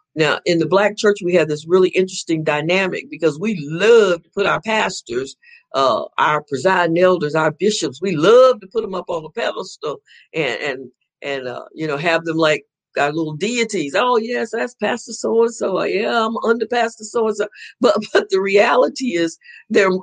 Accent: American